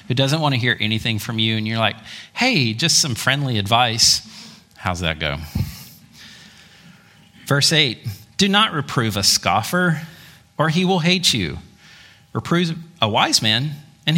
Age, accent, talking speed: 40-59, American, 150 wpm